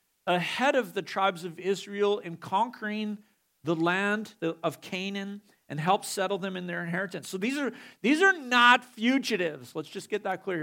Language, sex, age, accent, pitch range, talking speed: English, male, 50-69, American, 160-220 Hz, 175 wpm